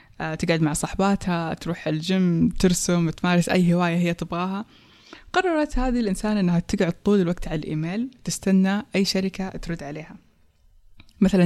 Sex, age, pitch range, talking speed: female, 20-39, 170-195 Hz, 135 wpm